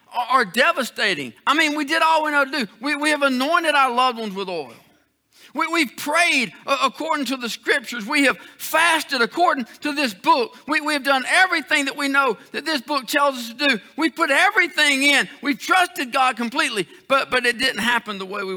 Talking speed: 215 wpm